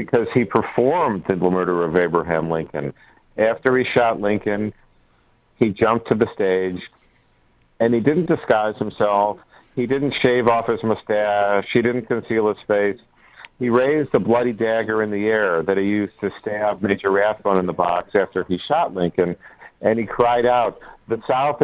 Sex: male